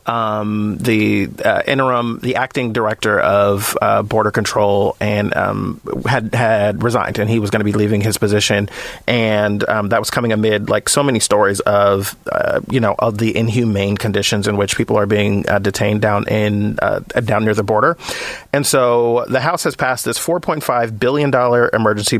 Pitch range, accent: 105-125 Hz, American